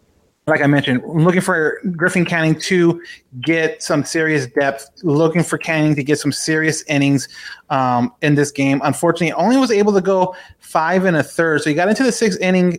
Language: English